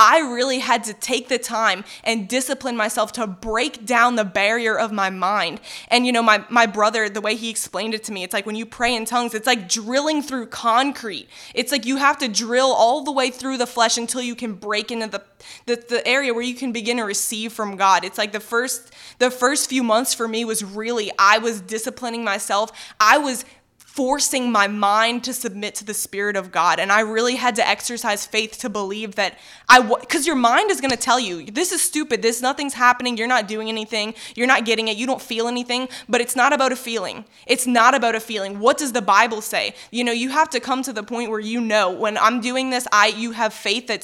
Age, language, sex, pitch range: 20-39, English, female, 215-250 Hz